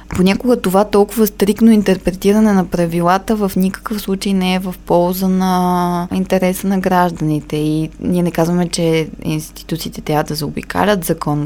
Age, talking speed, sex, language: 20-39, 145 wpm, female, Bulgarian